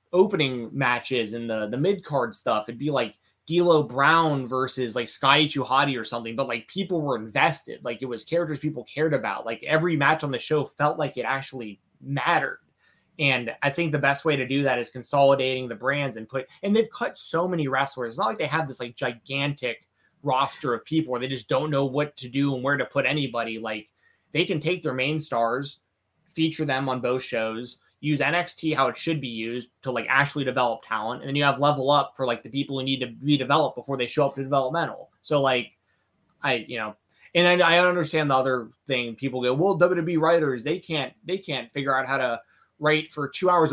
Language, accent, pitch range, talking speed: English, American, 125-155 Hz, 220 wpm